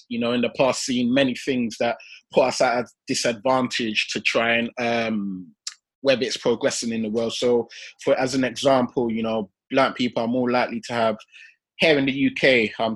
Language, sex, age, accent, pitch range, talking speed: English, male, 20-39, British, 120-150 Hz, 200 wpm